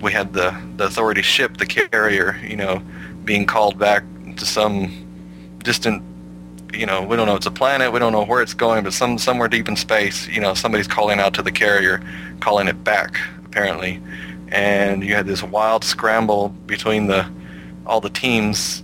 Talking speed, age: 190 wpm, 30-49